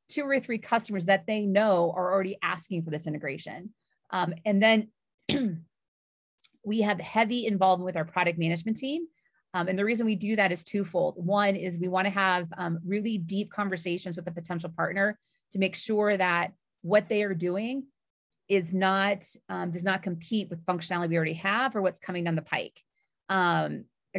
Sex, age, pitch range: female, 30-49, 175-205 Hz